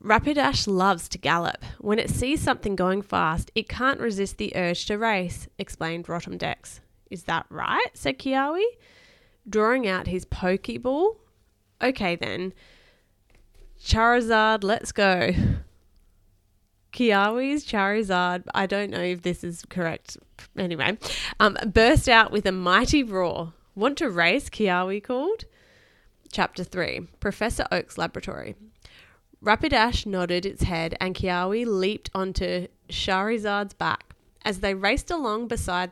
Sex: female